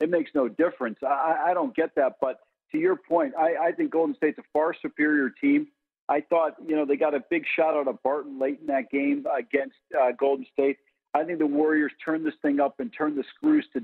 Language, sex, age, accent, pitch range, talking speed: English, male, 50-69, American, 140-185 Hz, 240 wpm